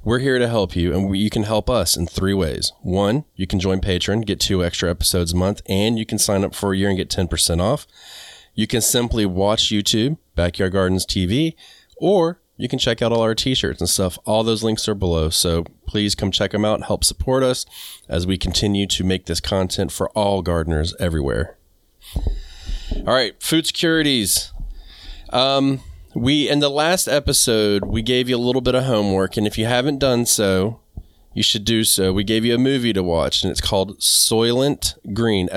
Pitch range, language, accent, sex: 90-120 Hz, English, American, male